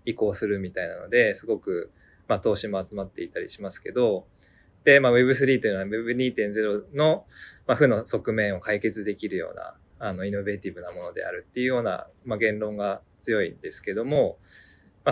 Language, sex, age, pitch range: Japanese, male, 20-39, 100-170 Hz